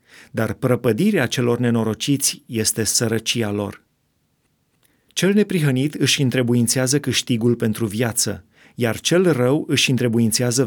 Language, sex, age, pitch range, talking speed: Romanian, male, 30-49, 115-135 Hz, 105 wpm